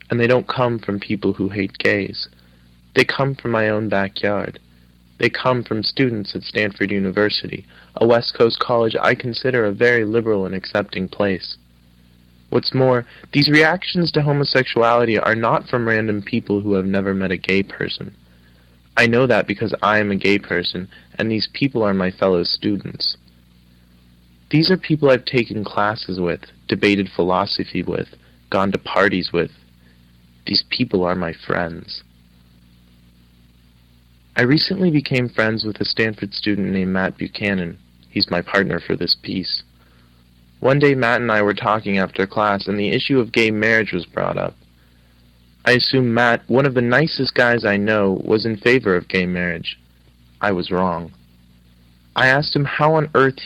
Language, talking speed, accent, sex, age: English, 165 wpm, American, male, 20-39